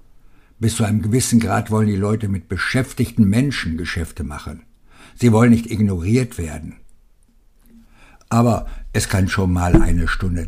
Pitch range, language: 95-120 Hz, German